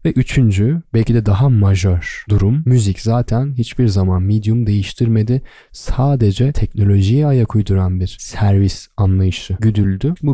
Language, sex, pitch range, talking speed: Turkish, male, 95-125 Hz, 130 wpm